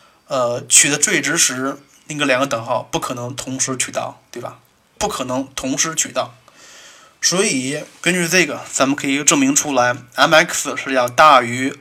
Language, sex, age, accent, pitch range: Chinese, male, 20-39, native, 130-175 Hz